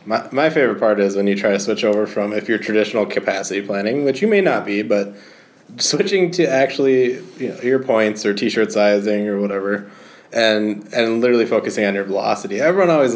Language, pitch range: English, 110-185 Hz